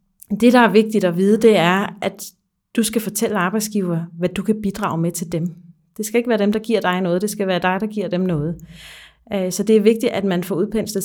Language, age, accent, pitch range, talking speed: Danish, 30-49, native, 180-215 Hz, 245 wpm